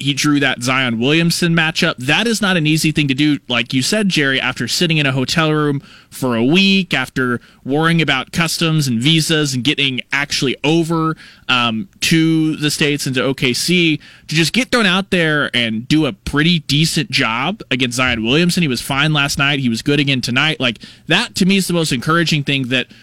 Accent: American